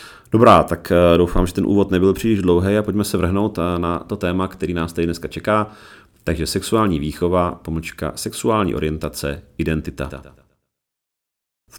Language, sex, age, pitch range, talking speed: Czech, male, 40-59, 80-90 Hz, 150 wpm